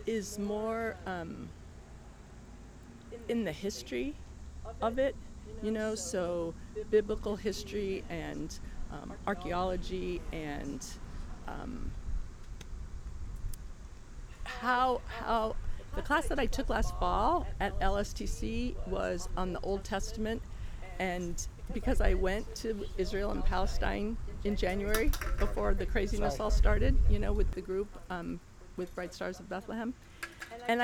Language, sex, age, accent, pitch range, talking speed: English, female, 40-59, American, 180-230 Hz, 120 wpm